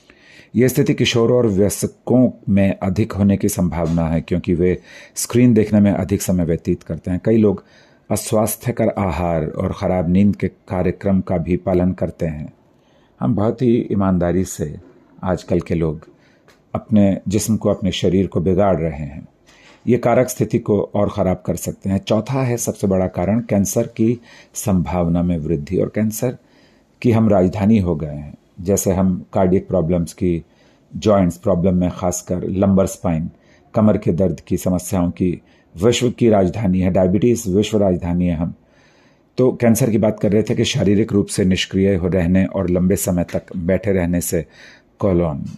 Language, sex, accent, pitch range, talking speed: Hindi, male, native, 90-110 Hz, 165 wpm